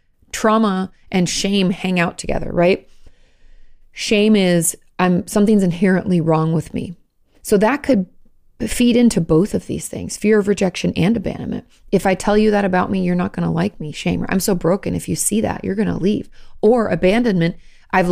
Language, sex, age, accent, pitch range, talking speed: English, female, 30-49, American, 175-220 Hz, 190 wpm